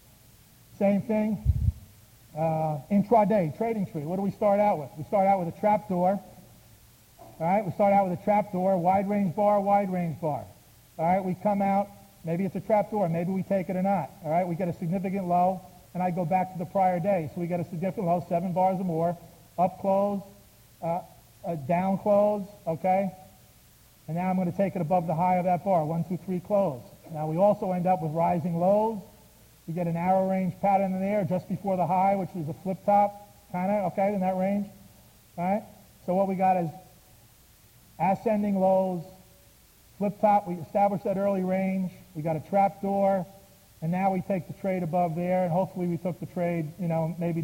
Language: English